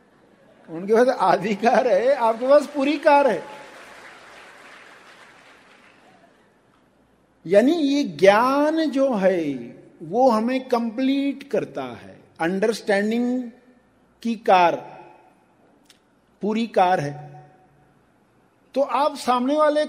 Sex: male